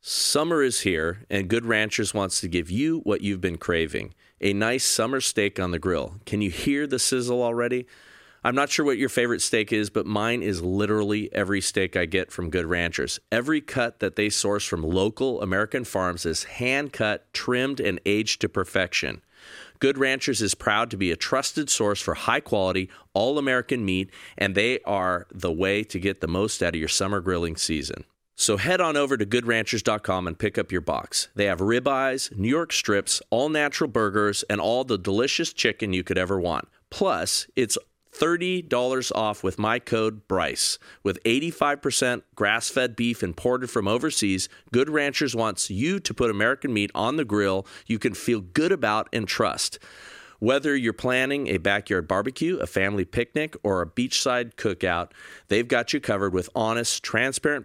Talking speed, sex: 180 wpm, male